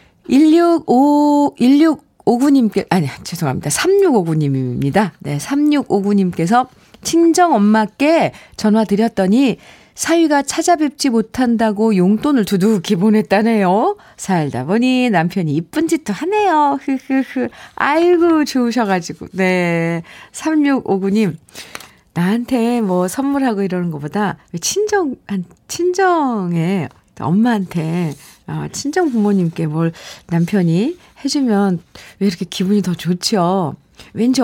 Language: Korean